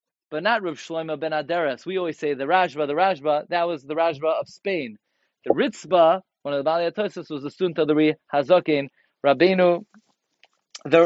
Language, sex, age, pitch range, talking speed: English, male, 30-49, 145-175 Hz, 185 wpm